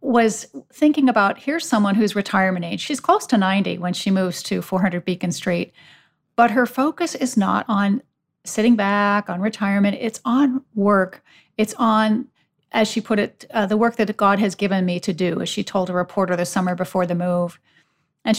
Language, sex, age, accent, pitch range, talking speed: English, female, 40-59, American, 185-225 Hz, 195 wpm